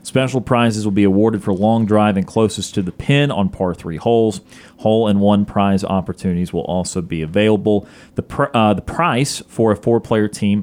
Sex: male